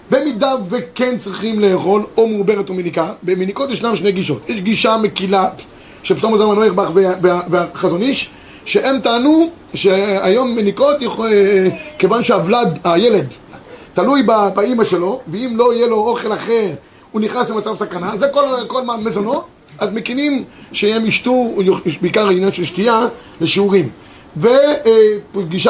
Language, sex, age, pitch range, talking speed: Hebrew, male, 30-49, 190-235 Hz, 130 wpm